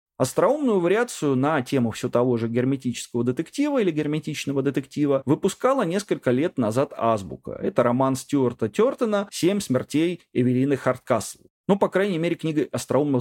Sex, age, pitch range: male, 30-49, 120-170 Hz